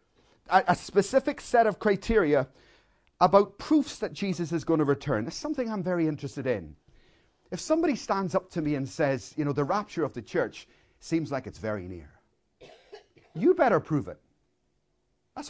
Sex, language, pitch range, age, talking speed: male, English, 175-250 Hz, 40-59, 170 wpm